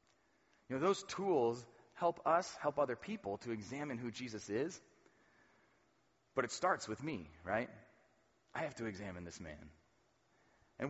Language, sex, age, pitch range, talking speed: English, male, 30-49, 120-175 Hz, 150 wpm